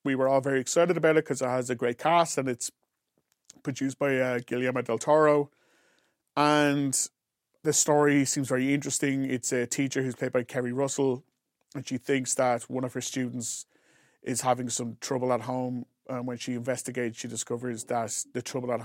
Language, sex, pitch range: English, male, 120-150 Hz